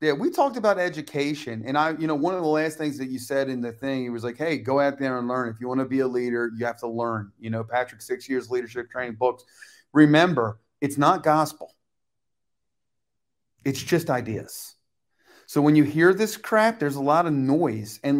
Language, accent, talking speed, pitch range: English, American, 220 wpm, 125-170 Hz